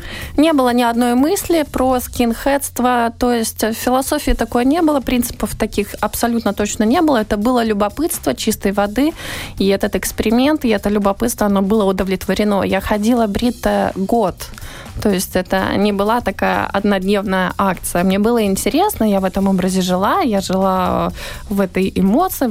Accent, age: native, 20-39